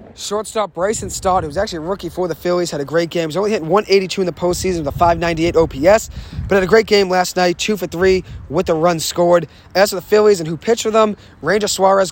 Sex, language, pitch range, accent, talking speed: male, English, 160-195 Hz, American, 255 wpm